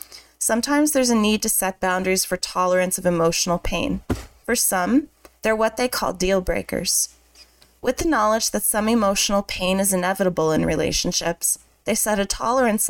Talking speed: 165 wpm